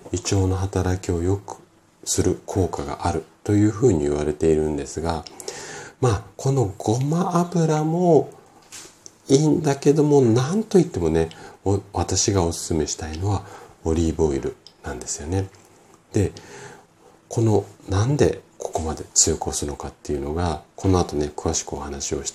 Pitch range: 80-120 Hz